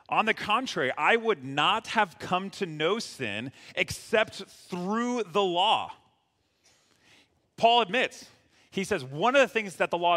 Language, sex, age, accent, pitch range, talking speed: English, male, 40-59, American, 125-195 Hz, 155 wpm